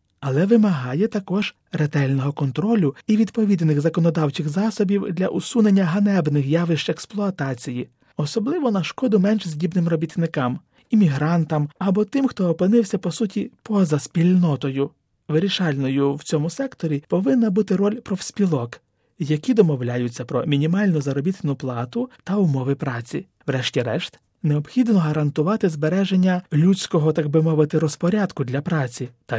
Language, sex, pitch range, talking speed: Ukrainian, male, 145-195 Hz, 120 wpm